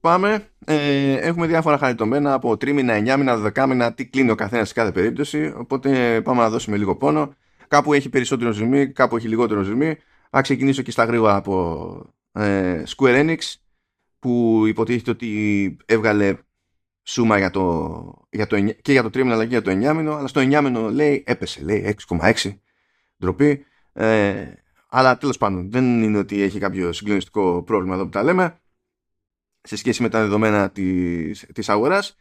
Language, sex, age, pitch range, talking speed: Greek, male, 30-49, 105-145 Hz, 160 wpm